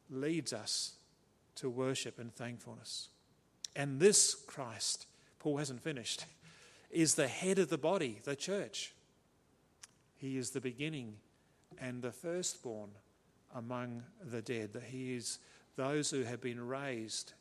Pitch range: 115-140 Hz